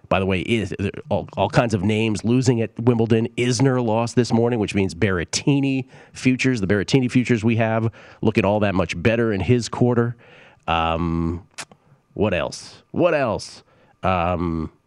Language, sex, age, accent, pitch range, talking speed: English, male, 40-59, American, 90-125 Hz, 155 wpm